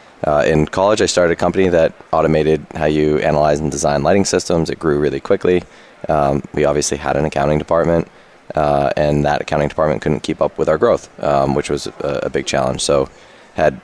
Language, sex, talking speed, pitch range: English, male, 205 wpm, 70-85 Hz